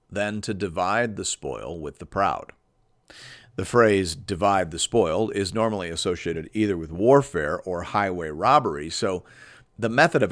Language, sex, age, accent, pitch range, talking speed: English, male, 50-69, American, 85-125 Hz, 150 wpm